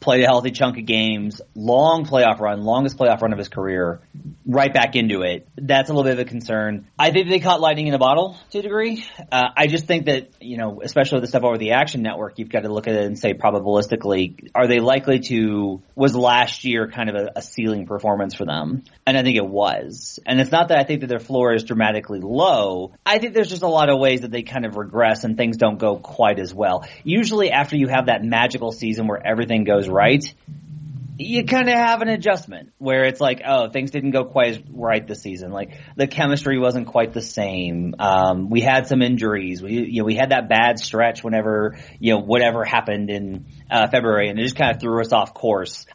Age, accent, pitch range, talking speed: 30-49, American, 110-140 Hz, 235 wpm